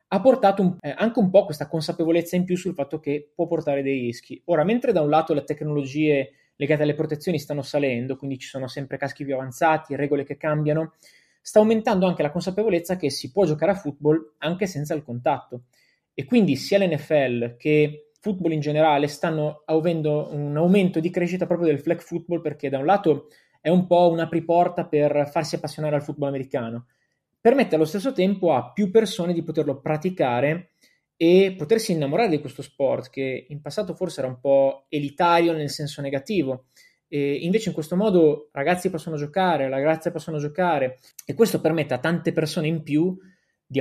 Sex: male